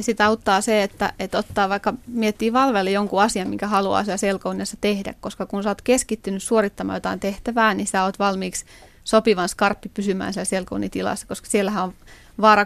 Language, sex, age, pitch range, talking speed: Finnish, female, 20-39, 190-215 Hz, 170 wpm